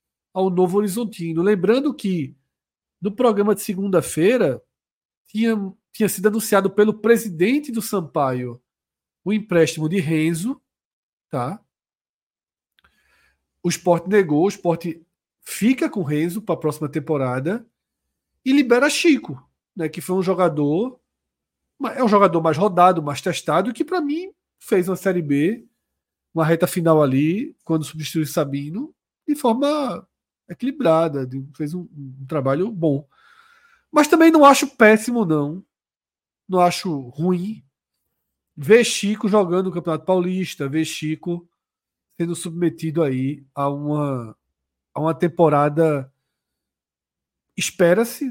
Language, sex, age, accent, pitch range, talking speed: Portuguese, male, 40-59, Brazilian, 150-210 Hz, 120 wpm